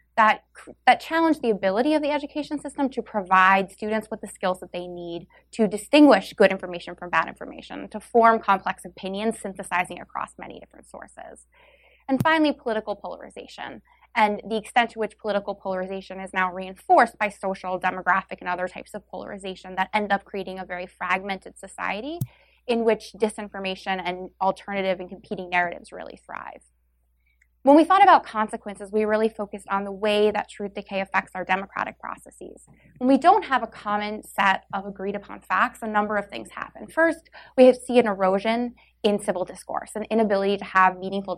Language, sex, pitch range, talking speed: English, female, 190-235 Hz, 175 wpm